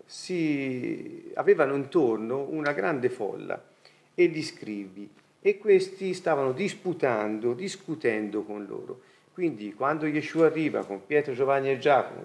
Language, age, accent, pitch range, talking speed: Italian, 40-59, native, 130-185 Hz, 120 wpm